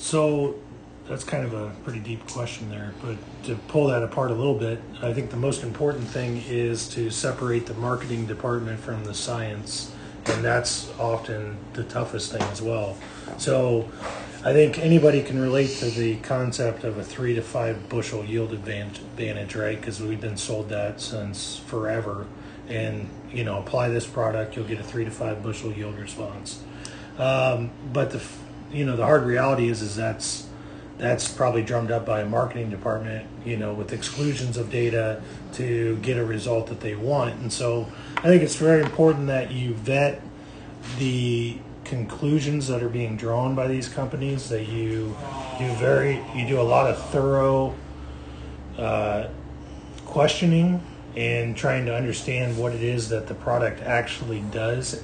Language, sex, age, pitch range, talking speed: English, male, 30-49, 110-130 Hz, 170 wpm